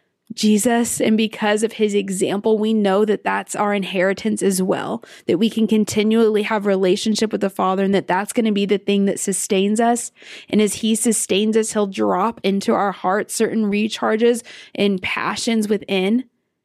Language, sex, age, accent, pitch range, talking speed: English, female, 20-39, American, 195-220 Hz, 175 wpm